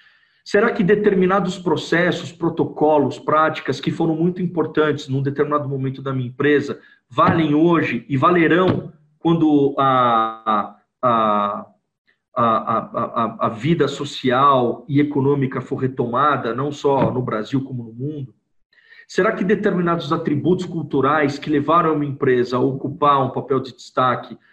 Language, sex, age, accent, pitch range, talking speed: Portuguese, male, 40-59, Brazilian, 130-165 Hz, 130 wpm